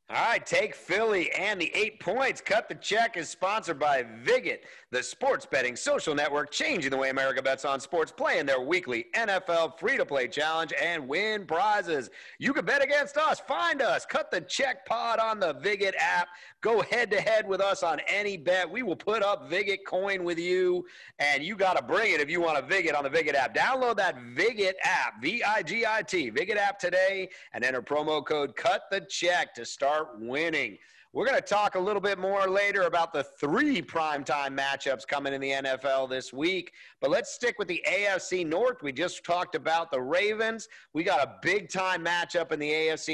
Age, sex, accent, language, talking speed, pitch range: 40-59, male, American, English, 195 wpm, 150-230 Hz